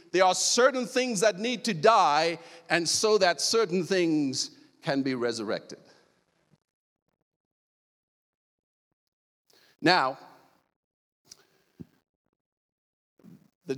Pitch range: 165-235 Hz